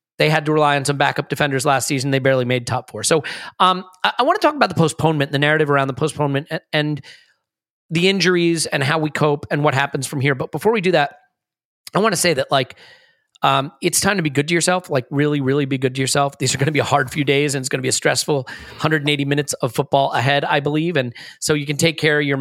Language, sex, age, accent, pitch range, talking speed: English, male, 30-49, American, 140-185 Hz, 270 wpm